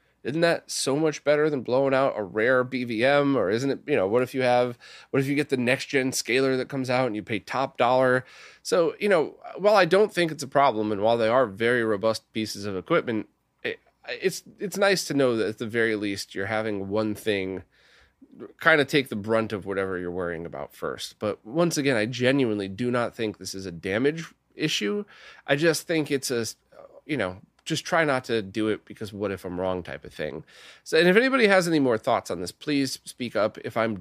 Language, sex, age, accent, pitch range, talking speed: English, male, 20-39, American, 105-145 Hz, 225 wpm